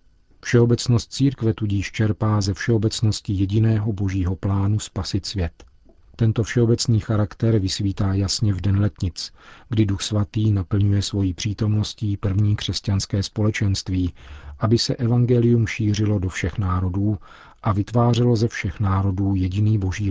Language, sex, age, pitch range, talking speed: Czech, male, 40-59, 95-115 Hz, 125 wpm